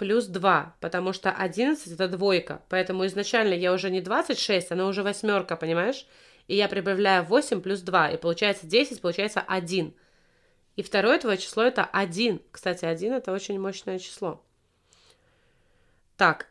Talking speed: 150 wpm